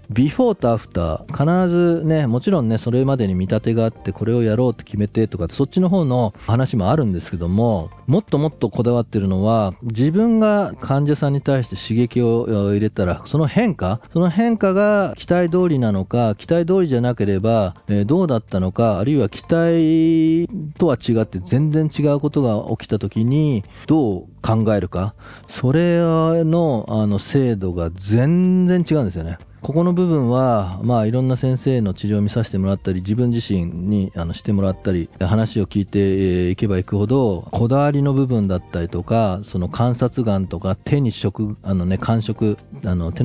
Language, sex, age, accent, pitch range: Japanese, male, 40-59, native, 100-145 Hz